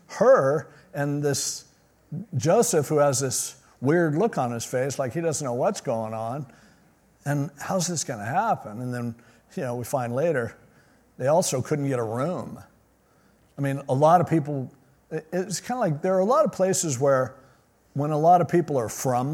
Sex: male